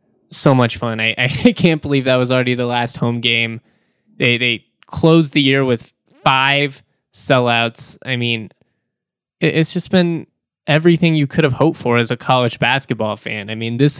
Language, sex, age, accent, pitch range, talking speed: English, male, 20-39, American, 120-140 Hz, 175 wpm